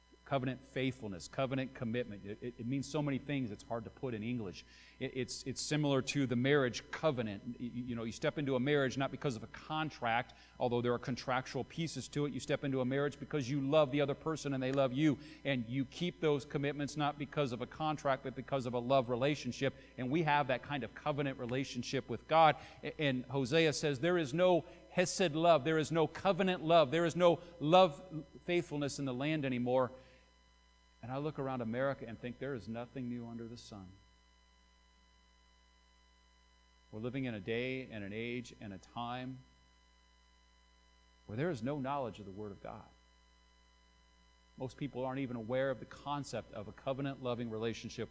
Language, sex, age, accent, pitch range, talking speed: English, male, 40-59, American, 110-145 Hz, 190 wpm